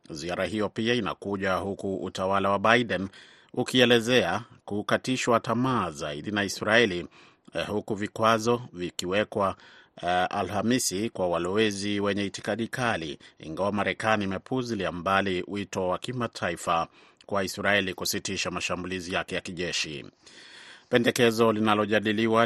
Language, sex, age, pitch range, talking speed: Swahili, male, 30-49, 95-110 Hz, 105 wpm